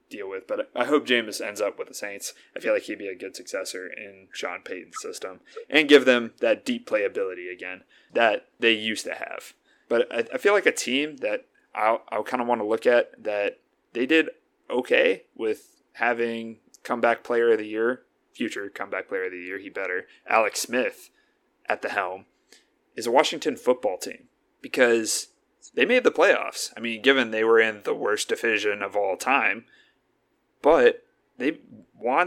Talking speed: 180 wpm